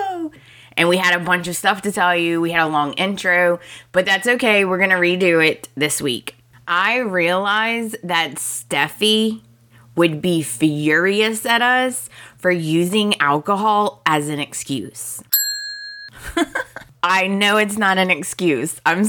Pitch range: 150-185 Hz